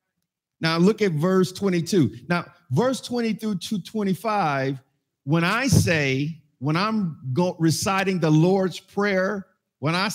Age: 50-69